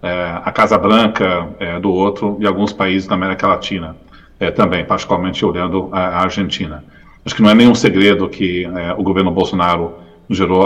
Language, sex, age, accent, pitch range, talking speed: English, male, 40-59, Brazilian, 95-115 Hz, 180 wpm